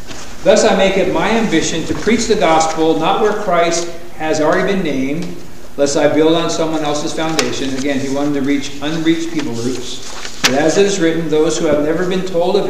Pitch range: 145-180 Hz